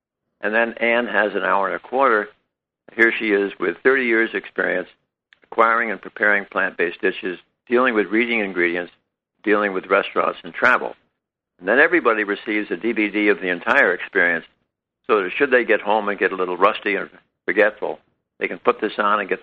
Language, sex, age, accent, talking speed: English, male, 60-79, American, 185 wpm